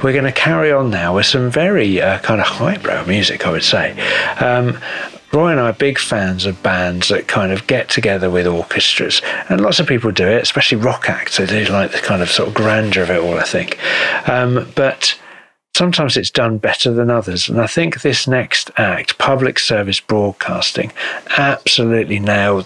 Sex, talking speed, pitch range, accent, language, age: male, 195 wpm, 100-130 Hz, British, English, 50-69